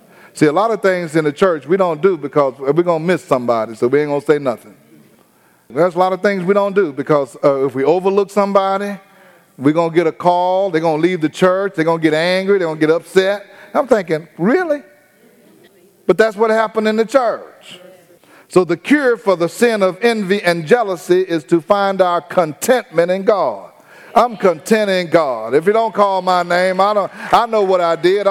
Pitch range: 170-205 Hz